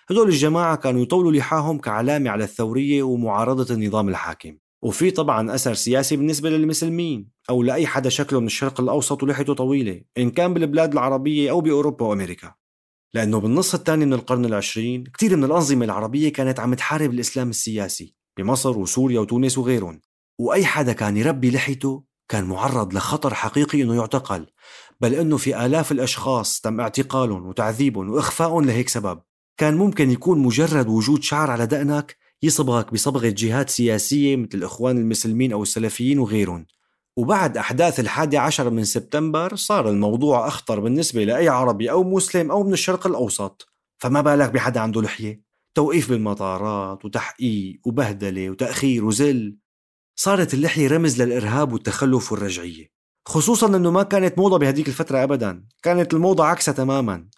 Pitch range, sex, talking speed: 110-150 Hz, male, 145 wpm